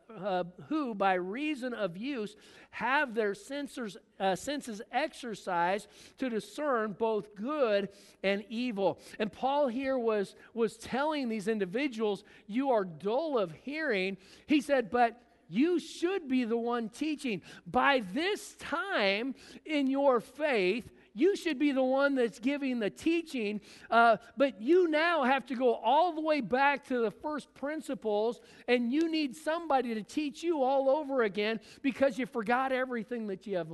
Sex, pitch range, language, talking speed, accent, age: male, 185-270 Hz, English, 155 wpm, American, 50-69